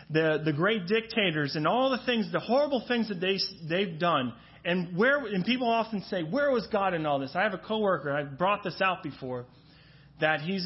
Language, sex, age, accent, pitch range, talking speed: English, male, 30-49, American, 155-205 Hz, 220 wpm